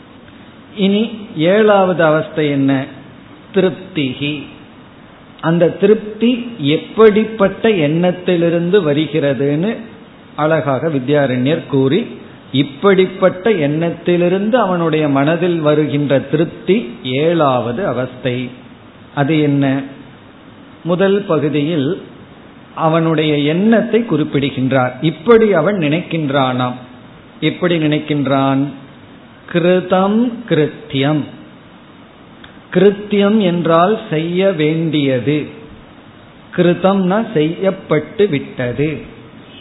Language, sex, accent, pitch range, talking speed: Tamil, male, native, 140-185 Hz, 55 wpm